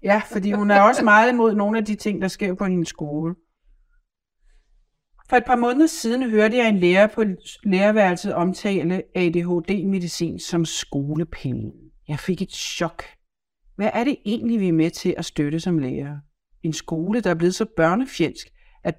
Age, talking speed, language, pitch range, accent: 60-79, 175 wpm, Danish, 160-215 Hz, native